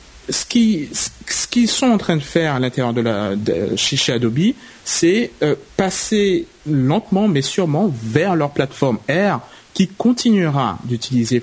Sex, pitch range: male, 130-185 Hz